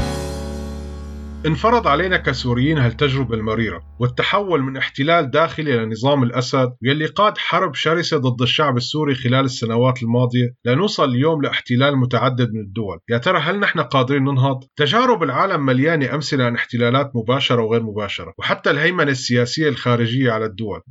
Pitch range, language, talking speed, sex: 120-155 Hz, Arabic, 140 wpm, male